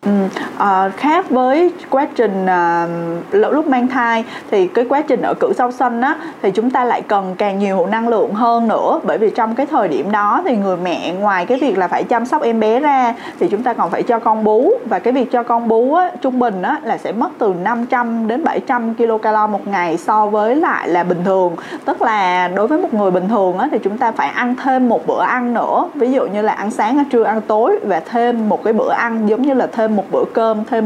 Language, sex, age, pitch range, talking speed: Vietnamese, female, 20-39, 205-265 Hz, 245 wpm